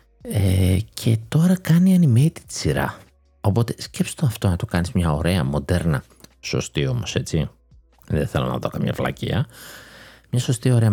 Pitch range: 90-125 Hz